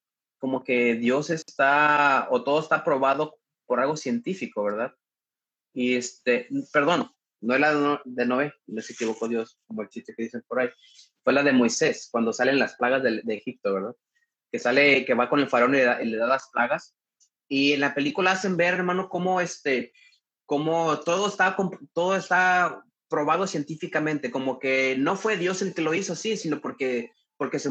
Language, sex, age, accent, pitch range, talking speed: Spanish, male, 30-49, Mexican, 135-190 Hz, 185 wpm